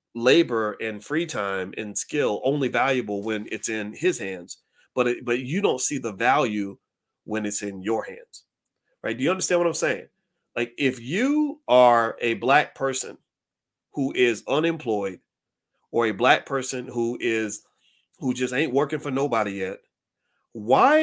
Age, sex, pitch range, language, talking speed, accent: 30-49, male, 110-165 Hz, English, 165 wpm, American